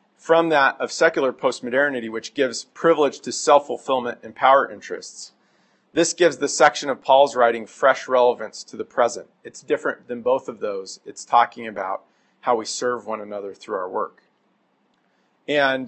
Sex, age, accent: male, 40-59, American